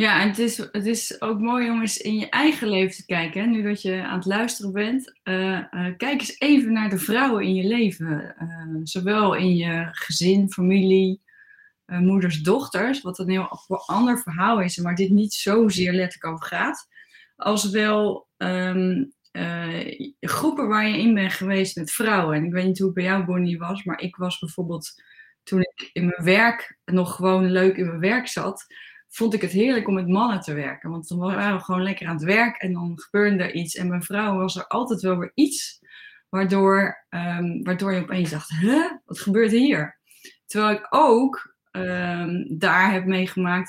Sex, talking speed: female, 200 wpm